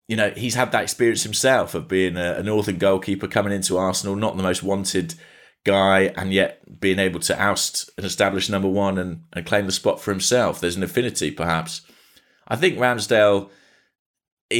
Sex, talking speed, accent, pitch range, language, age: male, 180 wpm, British, 90-110 Hz, English, 30-49